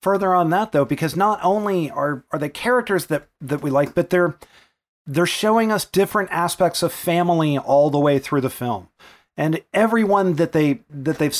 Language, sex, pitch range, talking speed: English, male, 150-185 Hz, 190 wpm